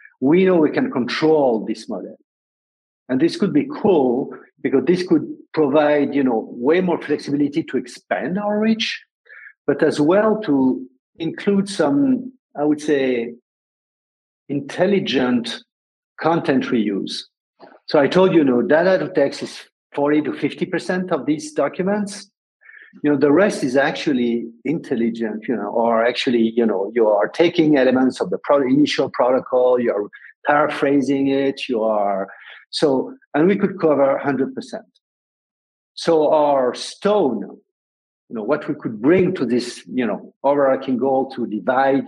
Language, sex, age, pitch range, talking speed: English, male, 50-69, 130-200 Hz, 145 wpm